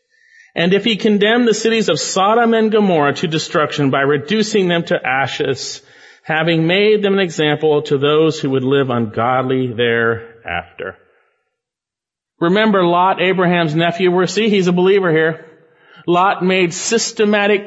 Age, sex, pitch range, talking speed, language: 40-59, male, 175-230 Hz, 145 wpm, English